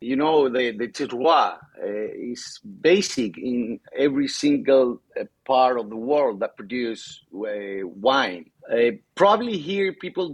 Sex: male